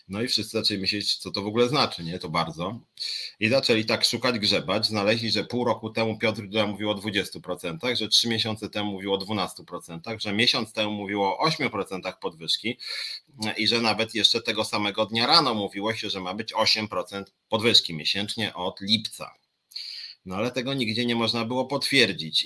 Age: 30-49